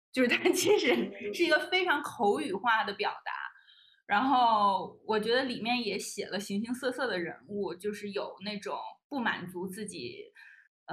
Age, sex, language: 20-39, female, Chinese